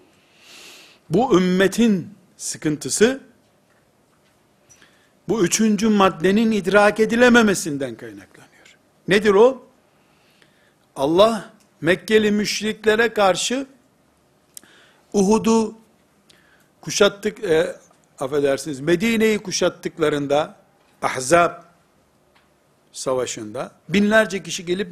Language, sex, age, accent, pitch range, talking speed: Turkish, male, 60-79, native, 175-205 Hz, 65 wpm